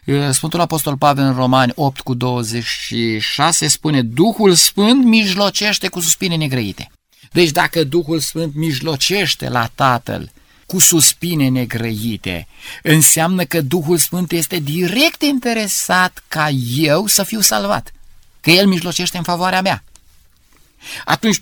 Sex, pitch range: male, 125-175 Hz